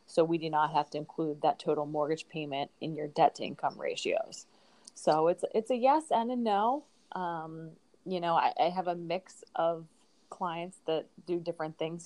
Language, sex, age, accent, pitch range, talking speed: English, female, 20-39, American, 160-180 Hz, 195 wpm